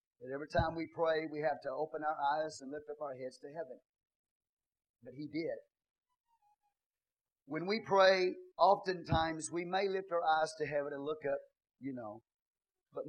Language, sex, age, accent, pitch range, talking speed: English, male, 40-59, American, 130-170 Hz, 175 wpm